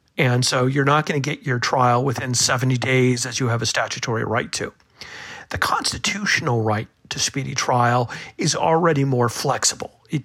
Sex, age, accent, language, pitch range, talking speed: male, 40-59, American, English, 125-140 Hz, 175 wpm